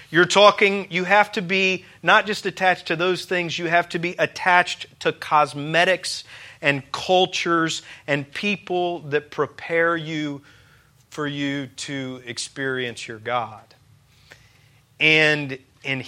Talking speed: 125 wpm